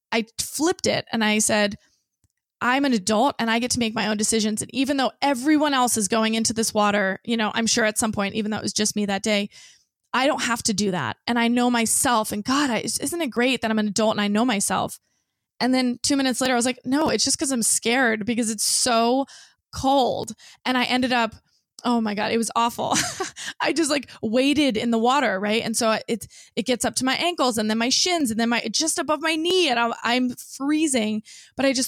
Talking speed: 240 wpm